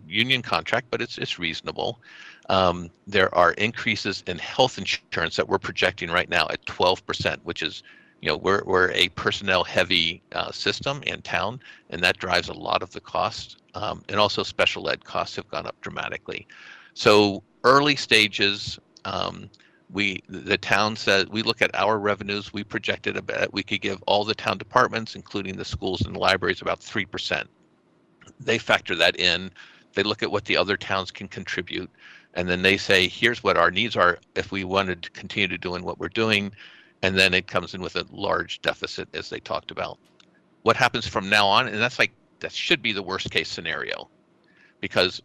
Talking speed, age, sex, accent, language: 190 wpm, 50-69, male, American, English